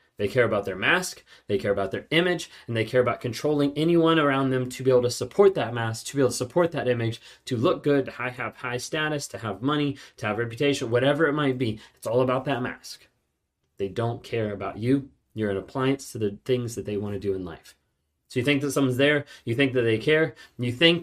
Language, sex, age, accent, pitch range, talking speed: English, male, 30-49, American, 125-150 Hz, 245 wpm